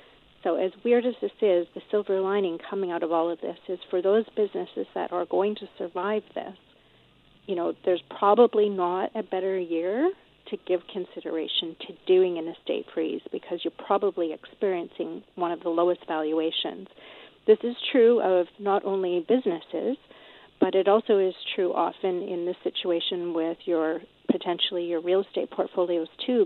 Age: 40-59